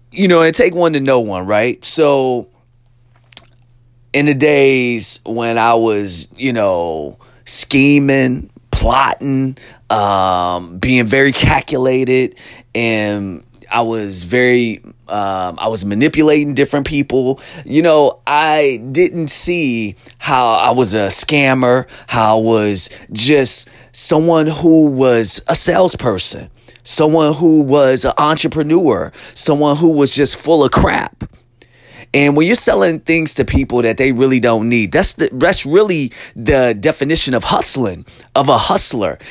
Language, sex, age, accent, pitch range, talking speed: English, male, 30-49, American, 120-150 Hz, 135 wpm